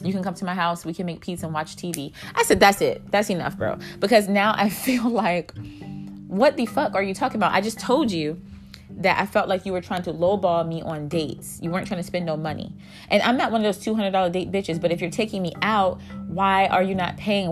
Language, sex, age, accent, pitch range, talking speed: English, female, 20-39, American, 165-205 Hz, 255 wpm